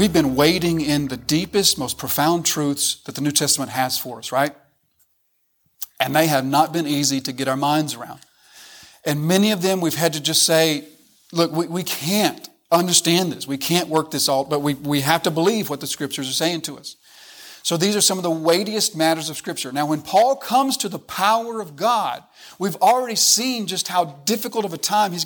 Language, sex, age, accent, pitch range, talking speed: English, male, 40-59, American, 145-205 Hz, 215 wpm